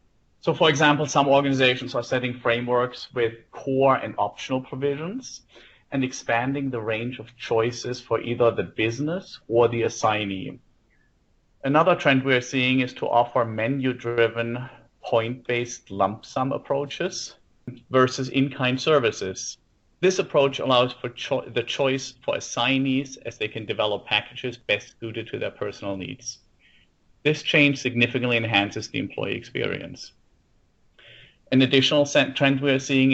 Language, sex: English, male